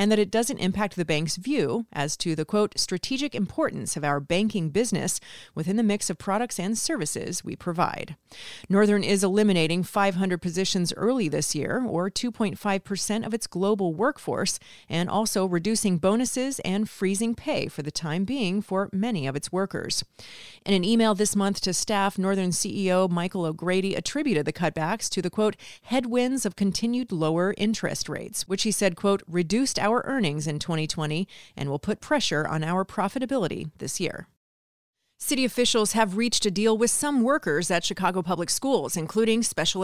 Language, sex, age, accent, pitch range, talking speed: English, female, 40-59, American, 180-225 Hz, 170 wpm